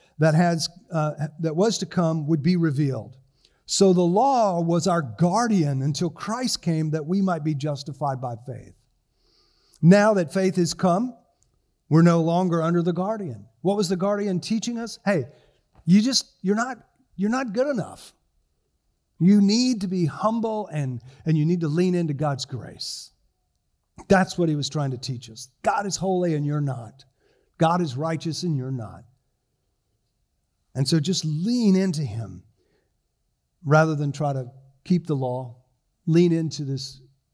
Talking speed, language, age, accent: 165 wpm, English, 50-69, American